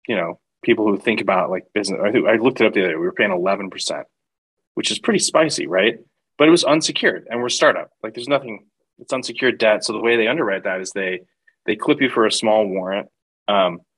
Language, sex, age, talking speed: English, male, 20-39, 230 wpm